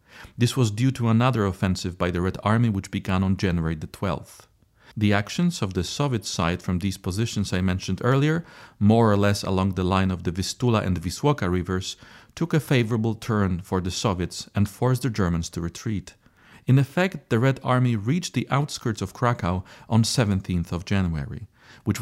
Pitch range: 95-120 Hz